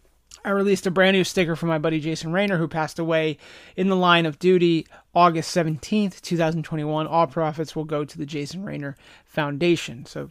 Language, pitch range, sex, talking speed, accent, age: English, 155-190 Hz, male, 185 wpm, American, 30-49